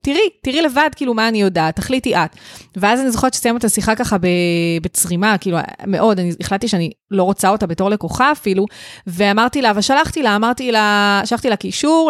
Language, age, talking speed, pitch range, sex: Hebrew, 20-39, 185 wpm, 190-240 Hz, female